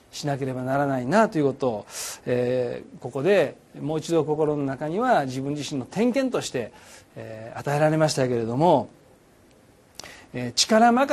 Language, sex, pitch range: Japanese, male, 130-195 Hz